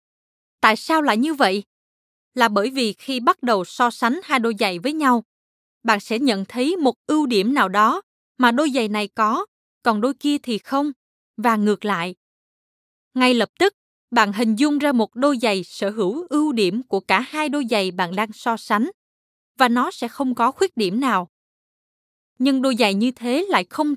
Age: 20-39